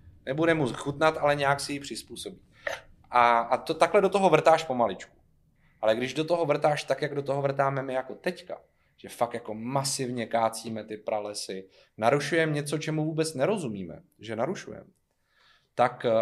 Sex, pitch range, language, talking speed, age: male, 120-150 Hz, Czech, 165 wpm, 30-49